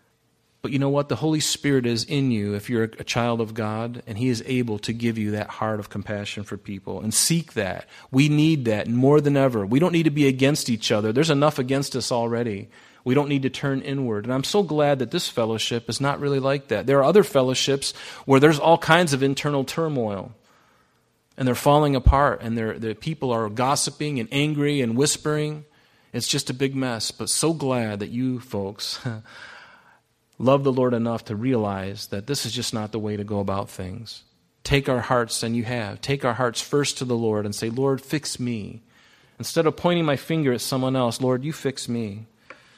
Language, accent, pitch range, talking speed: English, American, 115-140 Hz, 210 wpm